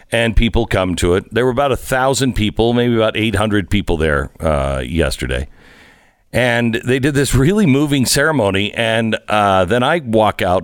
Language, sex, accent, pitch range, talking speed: English, male, American, 105-150 Hz, 175 wpm